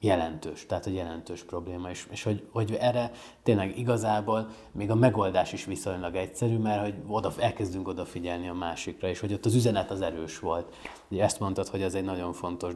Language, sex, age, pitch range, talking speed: Hungarian, male, 20-39, 90-110 Hz, 190 wpm